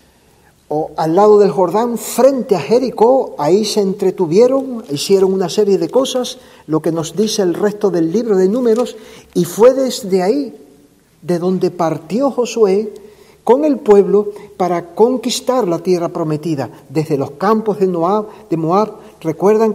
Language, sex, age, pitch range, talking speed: Spanish, male, 50-69, 170-225 Hz, 150 wpm